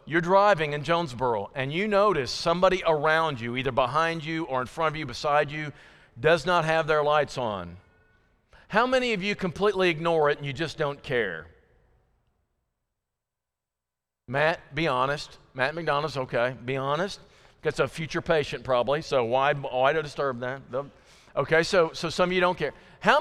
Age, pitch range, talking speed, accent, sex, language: 50-69, 140-195 Hz, 170 wpm, American, male, English